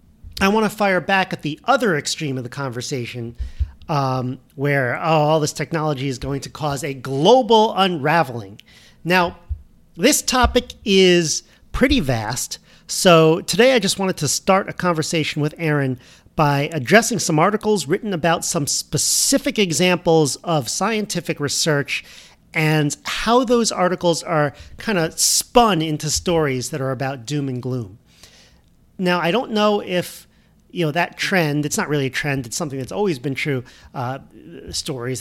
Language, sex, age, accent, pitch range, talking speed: English, male, 40-59, American, 140-185 Hz, 155 wpm